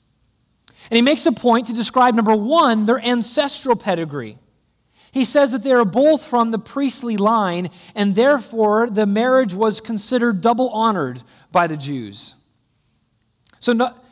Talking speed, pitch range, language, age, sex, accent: 145 wpm, 190-245 Hz, English, 30-49, male, American